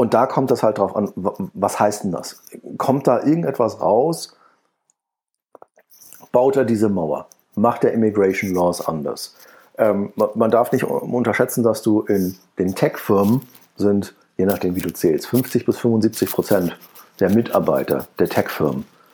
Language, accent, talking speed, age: German, German, 150 wpm, 50-69